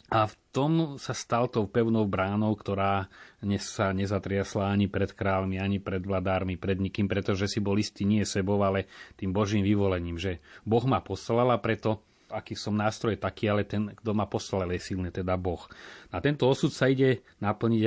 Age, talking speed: 30-49, 180 wpm